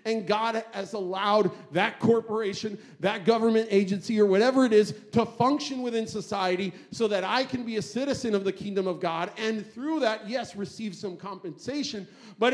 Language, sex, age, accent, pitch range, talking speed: English, male, 40-59, American, 185-235 Hz, 175 wpm